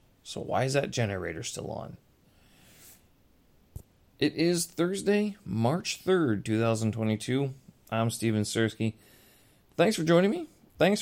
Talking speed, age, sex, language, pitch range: 115 wpm, 30-49, male, English, 100-130 Hz